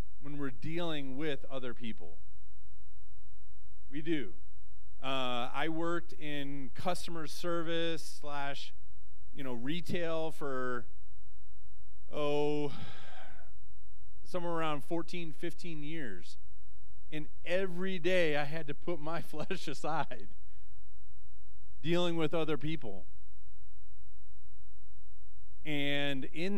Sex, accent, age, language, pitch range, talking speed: male, American, 30-49, English, 90-150 Hz, 95 wpm